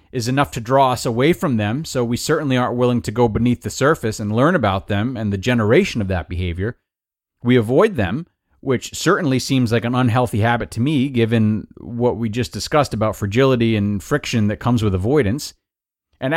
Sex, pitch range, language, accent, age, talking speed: male, 110-170 Hz, English, American, 30-49, 200 wpm